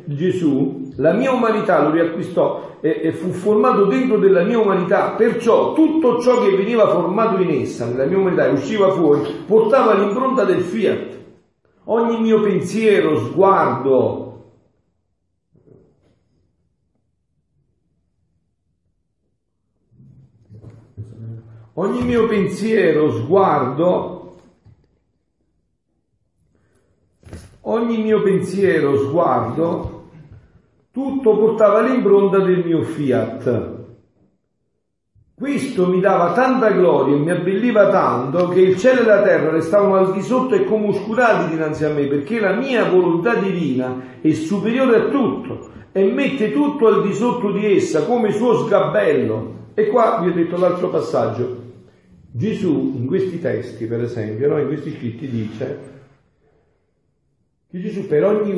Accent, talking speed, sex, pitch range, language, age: native, 120 wpm, male, 125-210 Hz, Italian, 50-69